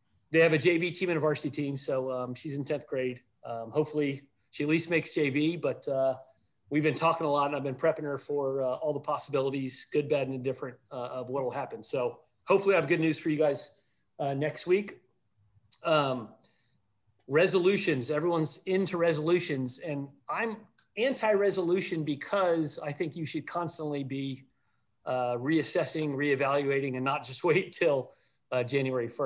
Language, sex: English, male